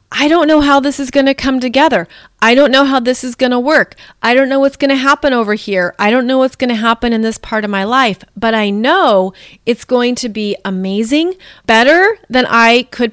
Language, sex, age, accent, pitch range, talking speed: English, female, 30-49, American, 220-275 Hz, 240 wpm